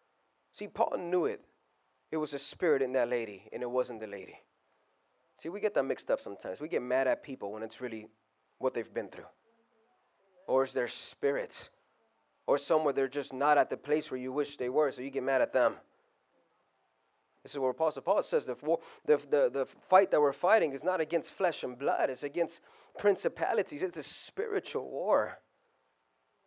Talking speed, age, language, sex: 195 wpm, 30-49, English, male